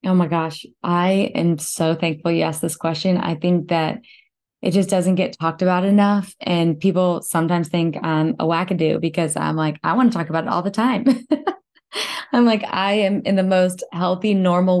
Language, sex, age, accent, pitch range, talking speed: English, female, 20-39, American, 165-190 Hz, 200 wpm